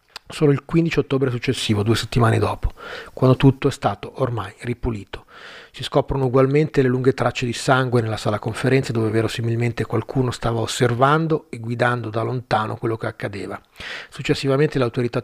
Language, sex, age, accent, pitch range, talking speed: Italian, male, 30-49, native, 115-135 Hz, 160 wpm